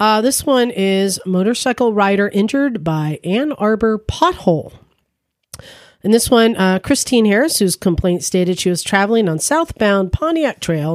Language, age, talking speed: English, 40-59, 150 wpm